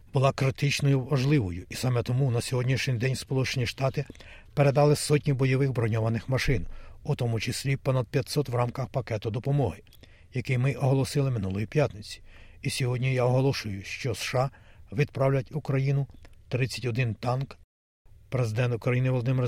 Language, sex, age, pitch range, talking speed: Ukrainian, male, 60-79, 110-135 Hz, 130 wpm